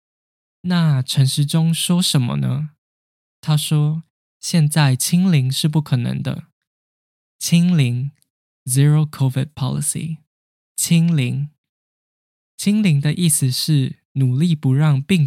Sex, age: male, 10-29